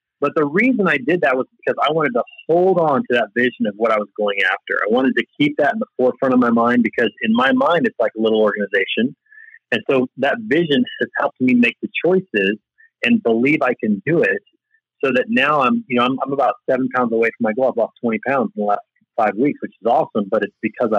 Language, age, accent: English, 30-49, American